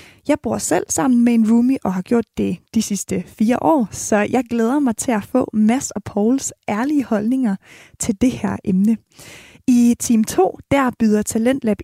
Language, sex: Danish, female